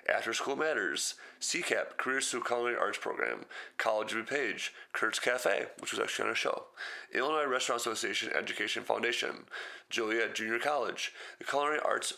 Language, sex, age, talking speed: English, male, 30-49, 160 wpm